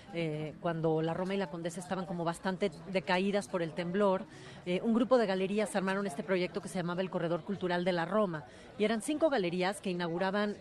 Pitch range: 180-215 Hz